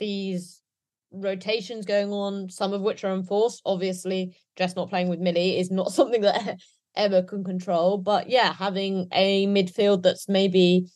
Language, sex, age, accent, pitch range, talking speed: English, female, 20-39, British, 185-215 Hz, 160 wpm